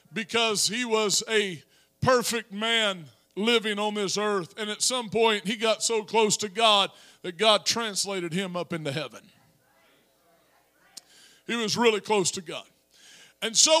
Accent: American